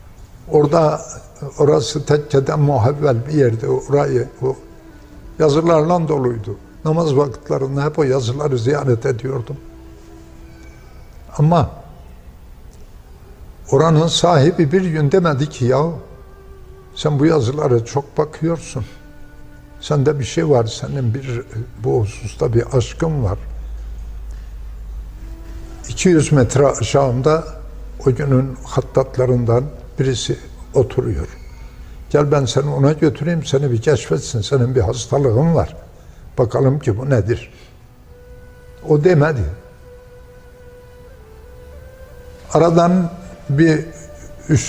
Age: 60-79